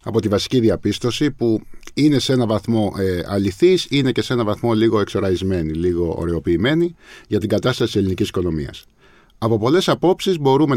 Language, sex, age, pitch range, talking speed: Greek, male, 50-69, 100-140 Hz, 165 wpm